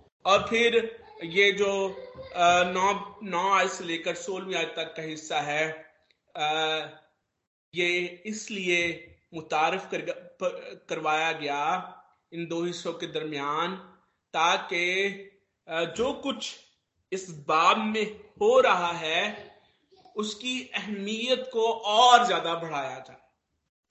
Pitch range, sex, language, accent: 175-255 Hz, male, Hindi, native